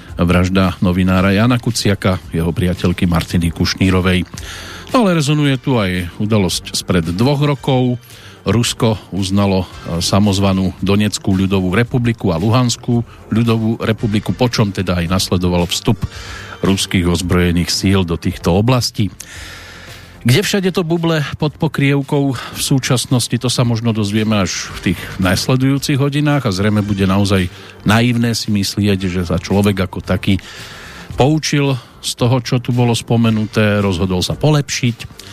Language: Slovak